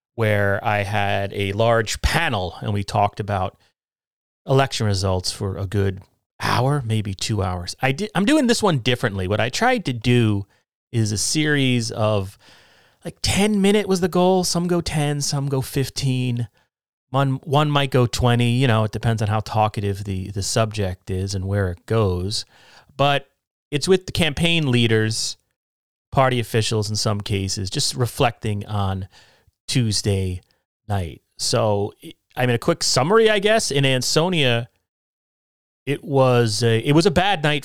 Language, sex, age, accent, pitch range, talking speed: English, male, 30-49, American, 100-135 Hz, 160 wpm